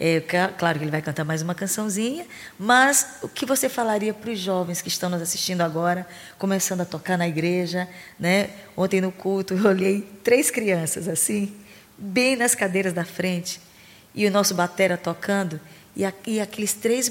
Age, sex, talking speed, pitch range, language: 20-39, female, 170 wpm, 180-230 Hz, Portuguese